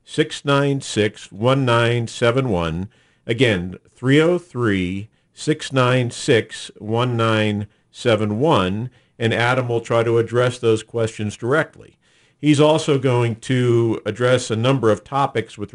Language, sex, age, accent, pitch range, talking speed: English, male, 50-69, American, 110-130 Hz, 90 wpm